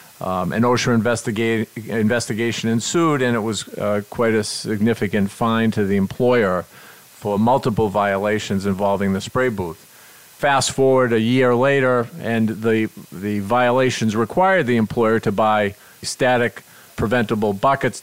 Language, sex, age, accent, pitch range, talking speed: English, male, 50-69, American, 110-125 Hz, 135 wpm